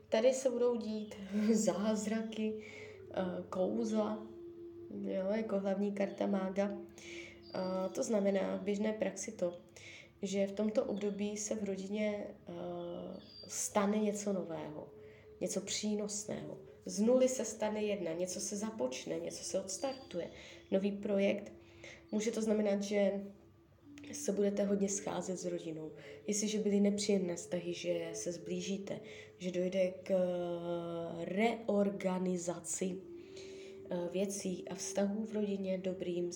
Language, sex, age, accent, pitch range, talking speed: Czech, female, 20-39, native, 180-220 Hz, 110 wpm